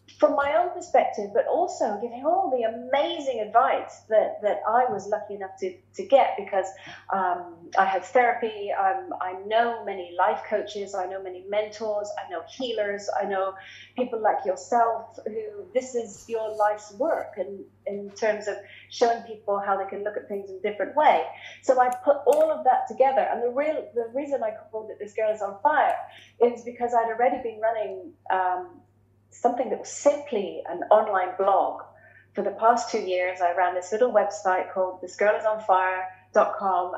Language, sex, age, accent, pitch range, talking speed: English, female, 30-49, British, 190-240 Hz, 180 wpm